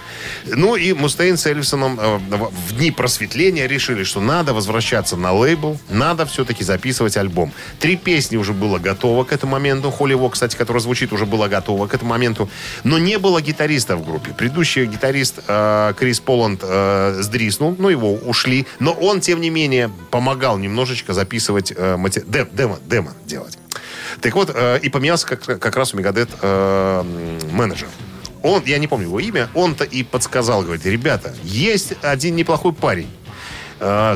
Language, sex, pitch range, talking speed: Russian, male, 105-140 Hz, 165 wpm